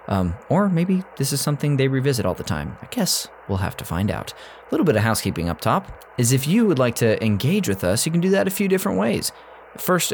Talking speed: 255 wpm